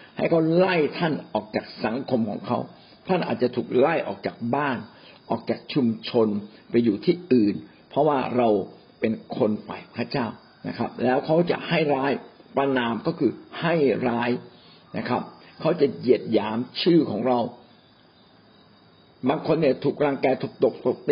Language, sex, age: Thai, male, 60-79